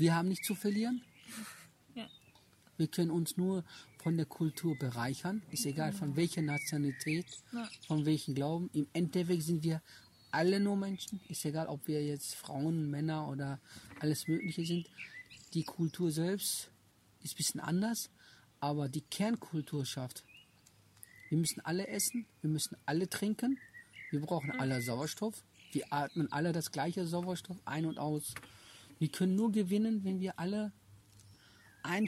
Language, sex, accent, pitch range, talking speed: German, male, German, 140-185 Hz, 150 wpm